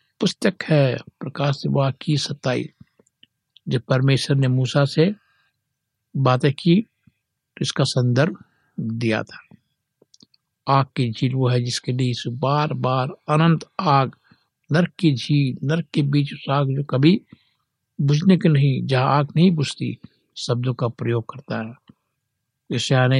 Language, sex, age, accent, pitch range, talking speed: Hindi, male, 60-79, native, 125-155 Hz, 120 wpm